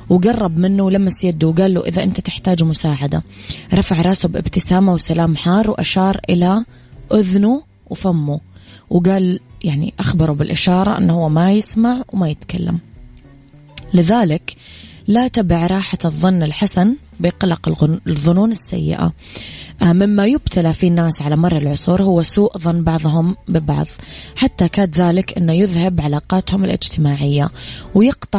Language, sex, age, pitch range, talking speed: English, female, 20-39, 155-185 Hz, 120 wpm